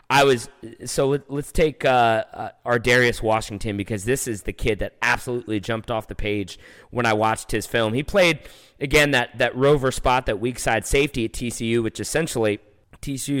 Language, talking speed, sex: English, 180 wpm, male